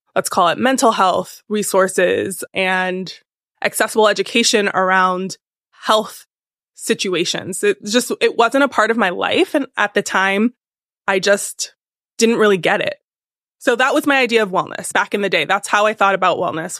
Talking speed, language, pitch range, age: 170 wpm, English, 200-250 Hz, 20-39